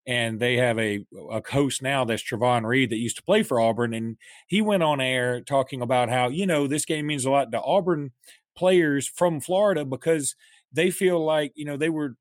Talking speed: 215 wpm